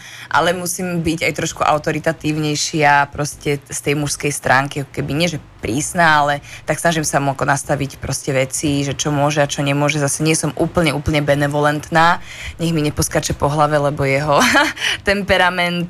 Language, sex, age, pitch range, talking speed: Slovak, female, 20-39, 145-165 Hz, 160 wpm